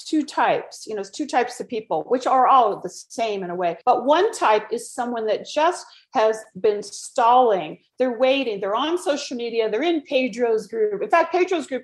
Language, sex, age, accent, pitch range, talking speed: English, female, 40-59, American, 210-290 Hz, 210 wpm